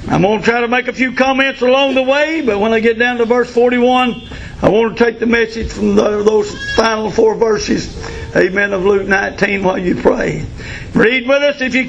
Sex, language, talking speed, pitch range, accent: male, English, 215 wpm, 225-260 Hz, American